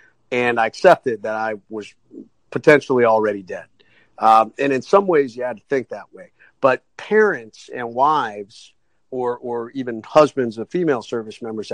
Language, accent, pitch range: English, American, 110-140 Hz